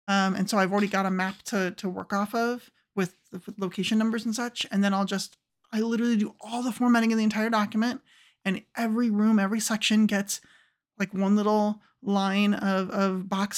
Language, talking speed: English, 210 wpm